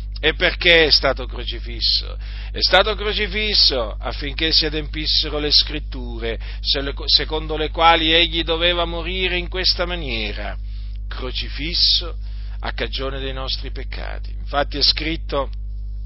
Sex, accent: male, native